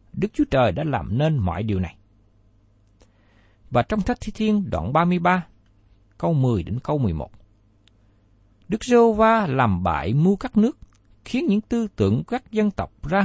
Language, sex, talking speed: Vietnamese, male, 165 wpm